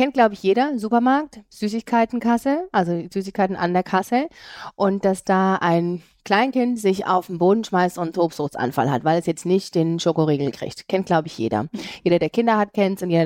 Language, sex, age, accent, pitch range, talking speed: German, female, 30-49, German, 170-225 Hz, 195 wpm